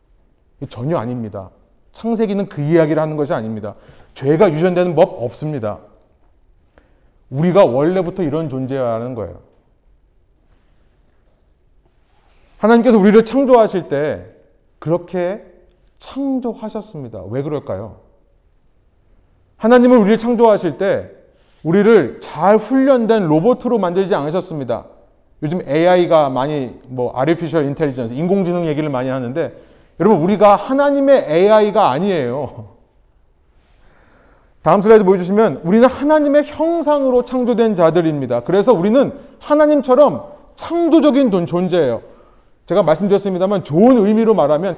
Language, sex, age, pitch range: Korean, male, 30-49, 145-235 Hz